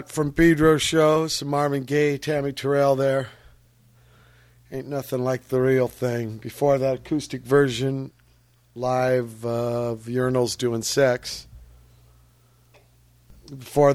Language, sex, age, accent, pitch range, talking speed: English, male, 50-69, American, 110-130 Hz, 110 wpm